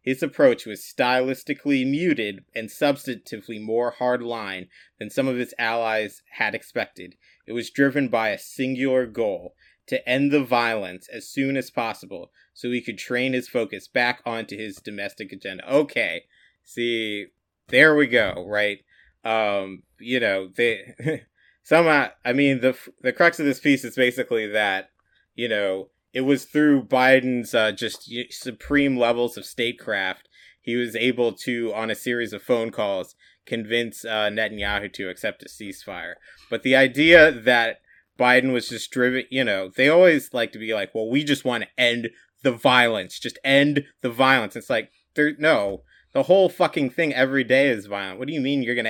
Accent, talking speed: American, 170 wpm